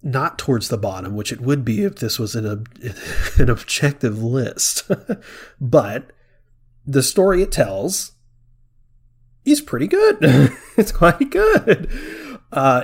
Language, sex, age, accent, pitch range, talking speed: English, male, 30-49, American, 115-130 Hz, 130 wpm